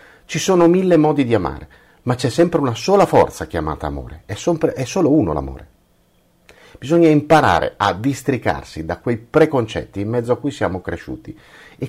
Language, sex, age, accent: Italian, male, 50-69, native